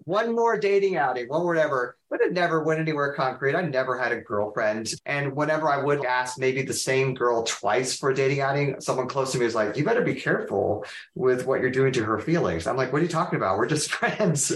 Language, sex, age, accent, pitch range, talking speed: English, male, 30-49, American, 120-155 Hz, 240 wpm